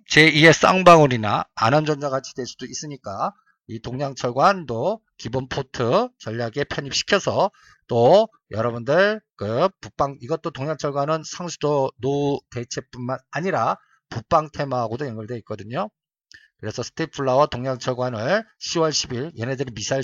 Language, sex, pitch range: Korean, male, 120-160 Hz